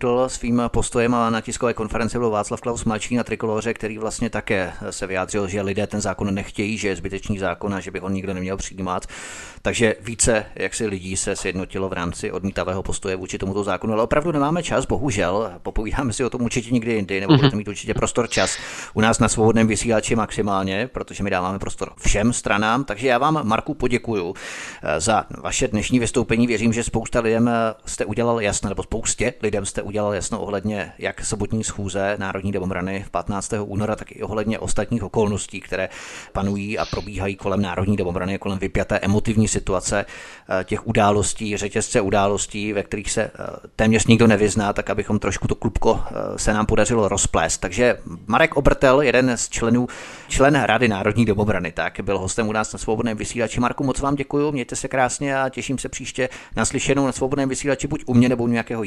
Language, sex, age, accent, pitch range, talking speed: Czech, male, 30-49, native, 100-120 Hz, 180 wpm